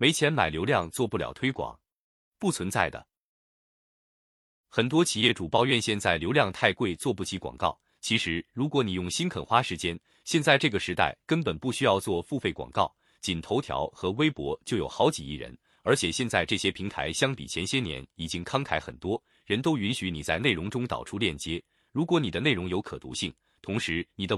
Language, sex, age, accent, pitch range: Chinese, male, 30-49, native, 85-130 Hz